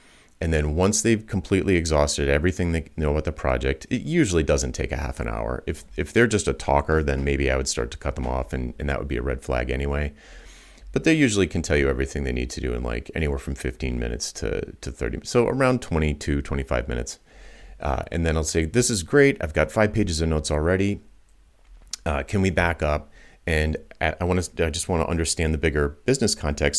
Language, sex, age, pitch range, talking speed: English, male, 30-49, 70-85 Hz, 230 wpm